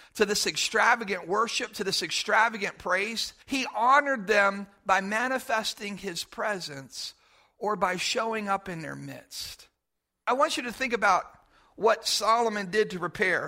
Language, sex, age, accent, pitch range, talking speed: English, male, 50-69, American, 190-240 Hz, 145 wpm